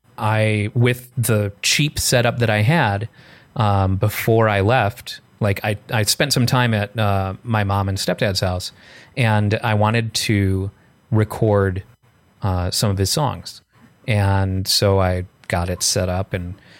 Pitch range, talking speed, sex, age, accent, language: 95-115 Hz, 155 wpm, male, 30-49, American, English